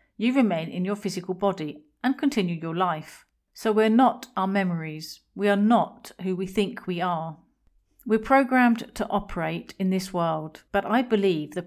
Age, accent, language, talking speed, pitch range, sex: 40-59, British, English, 175 wpm, 175-215 Hz, female